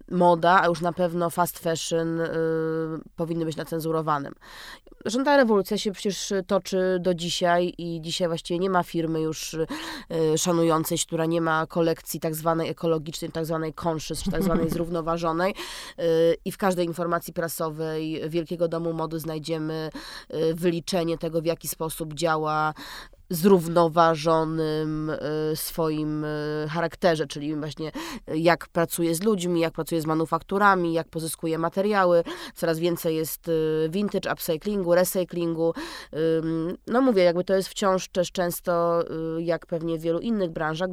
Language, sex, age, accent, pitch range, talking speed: Polish, female, 20-39, native, 160-175 Hz, 135 wpm